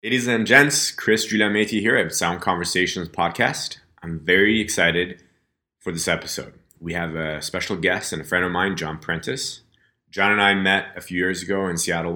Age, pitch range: 30-49, 80-105 Hz